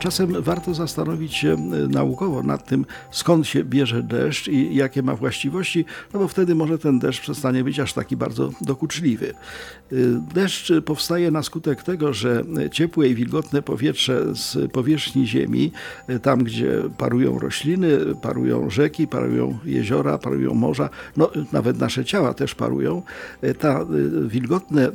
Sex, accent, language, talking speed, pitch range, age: male, native, Polish, 140 wpm, 120-165 Hz, 50-69